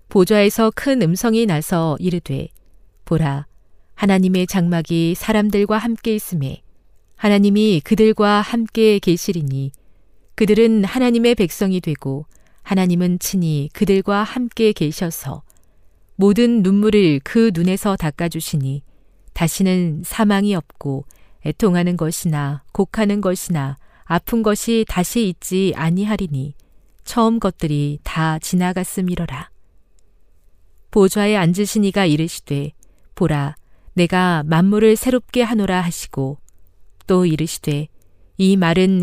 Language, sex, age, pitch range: Korean, female, 40-59, 150-205 Hz